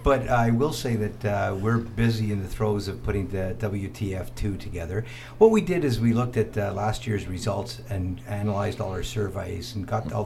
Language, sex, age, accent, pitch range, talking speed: English, male, 50-69, American, 100-120 Hz, 205 wpm